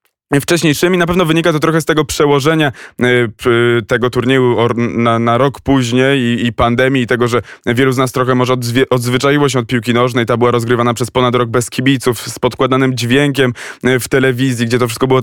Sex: male